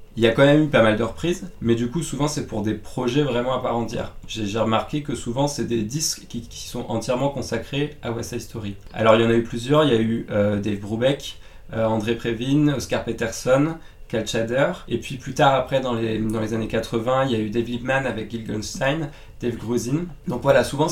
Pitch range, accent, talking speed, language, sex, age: 110-140 Hz, French, 250 wpm, French, male, 20-39